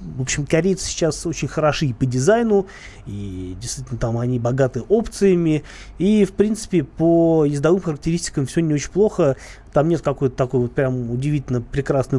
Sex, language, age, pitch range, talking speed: male, Russian, 20-39, 125-170 Hz, 165 wpm